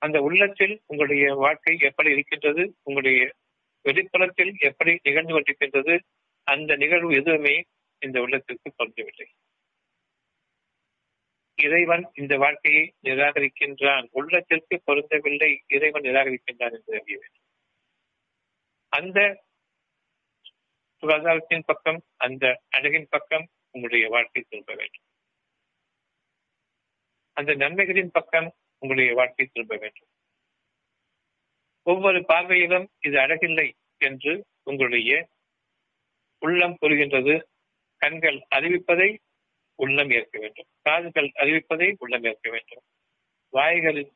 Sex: male